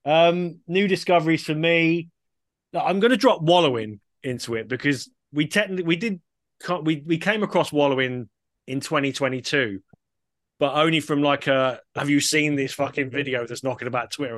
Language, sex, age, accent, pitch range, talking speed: English, male, 20-39, British, 120-145 Hz, 165 wpm